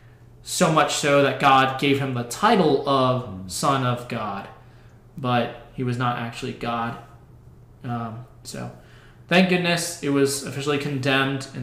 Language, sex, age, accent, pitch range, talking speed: English, male, 20-39, American, 120-150 Hz, 145 wpm